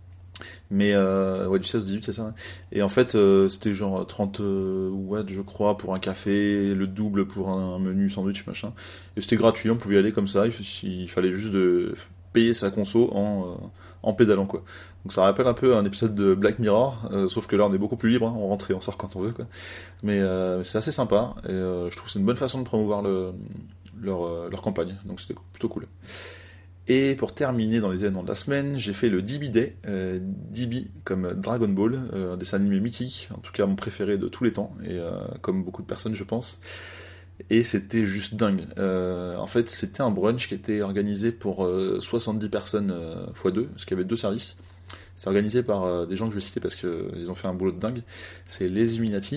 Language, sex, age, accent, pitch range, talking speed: French, male, 20-39, French, 95-110 Hz, 235 wpm